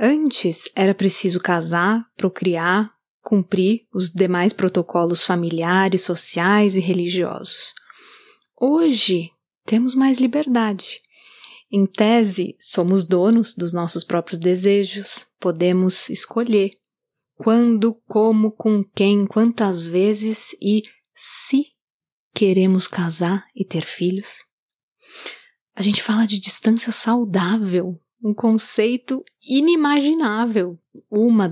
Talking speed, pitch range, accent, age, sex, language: 95 wpm, 185-235 Hz, Brazilian, 20-39, female, Portuguese